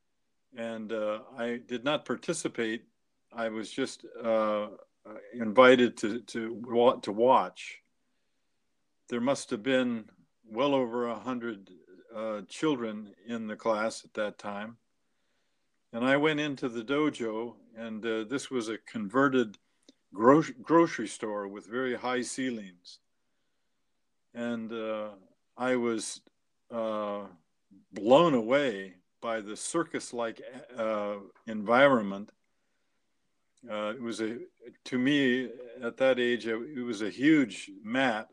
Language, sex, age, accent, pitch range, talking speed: English, male, 50-69, American, 110-125 Hz, 120 wpm